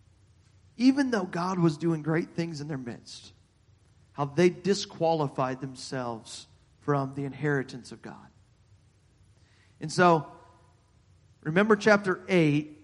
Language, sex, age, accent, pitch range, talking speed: English, male, 40-59, American, 115-165 Hz, 110 wpm